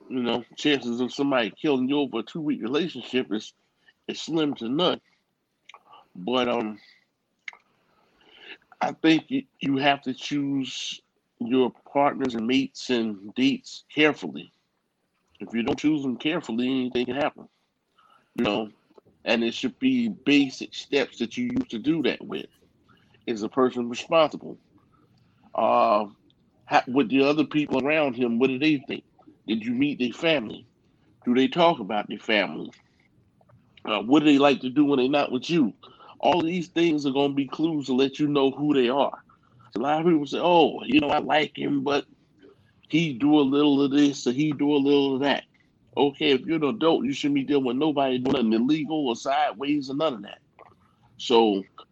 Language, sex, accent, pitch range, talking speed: English, male, American, 125-155 Hz, 180 wpm